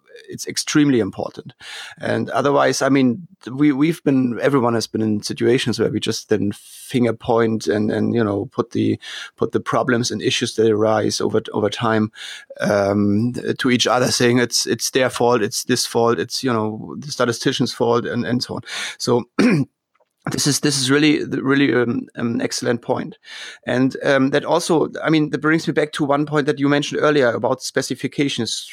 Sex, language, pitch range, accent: male, English, 115-140 Hz, German